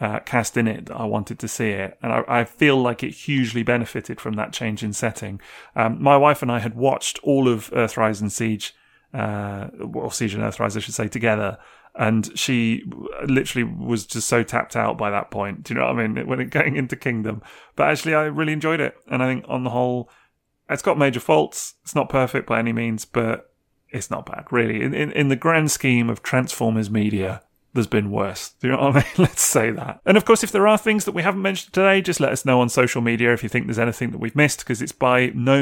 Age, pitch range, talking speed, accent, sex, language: 30-49, 115-140 Hz, 245 wpm, British, male, English